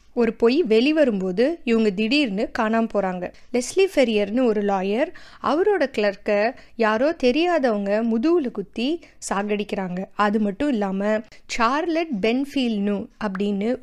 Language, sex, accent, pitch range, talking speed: Tamil, female, native, 210-260 Hz, 90 wpm